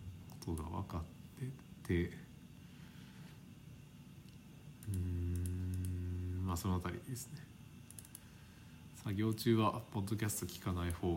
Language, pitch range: Japanese, 85-115 Hz